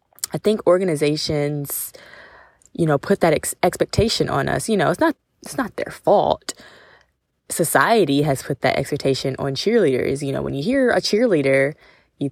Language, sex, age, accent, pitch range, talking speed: English, female, 20-39, American, 140-180 Hz, 160 wpm